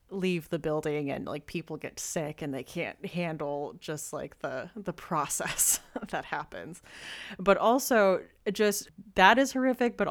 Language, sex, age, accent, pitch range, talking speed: English, female, 20-39, American, 150-175 Hz, 155 wpm